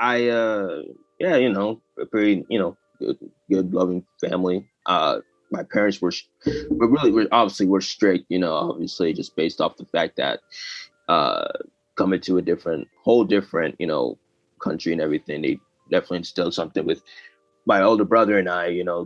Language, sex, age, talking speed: Swahili, male, 20-39, 175 wpm